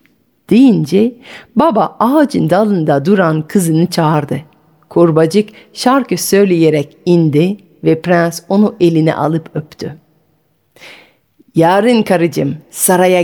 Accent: native